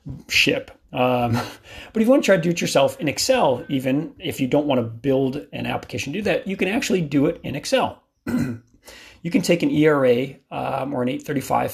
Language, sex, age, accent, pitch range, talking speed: English, male, 40-59, American, 125-145 Hz, 215 wpm